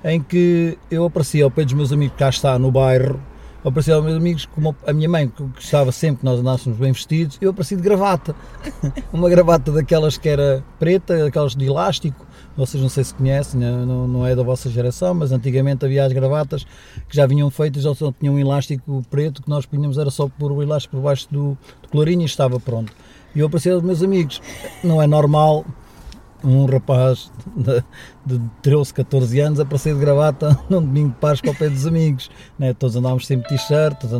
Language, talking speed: Portuguese, 205 wpm